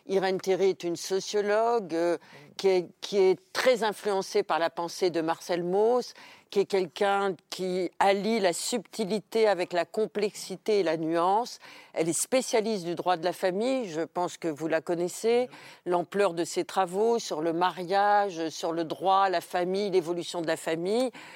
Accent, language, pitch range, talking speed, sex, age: French, French, 170-215 Hz, 170 wpm, female, 50-69